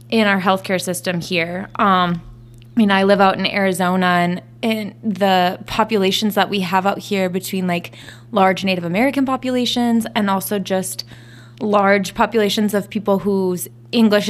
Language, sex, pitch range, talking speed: English, female, 175-220 Hz, 155 wpm